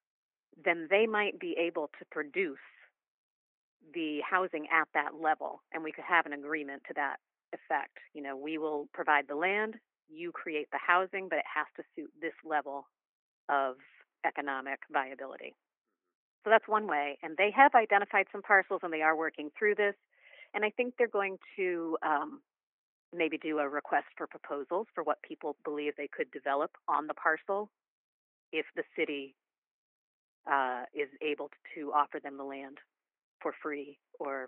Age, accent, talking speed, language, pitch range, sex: 40-59, American, 165 wpm, English, 145-190 Hz, female